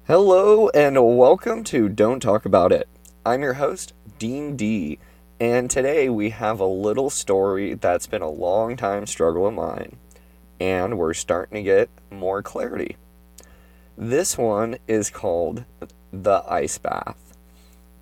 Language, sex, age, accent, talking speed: English, male, 20-39, American, 140 wpm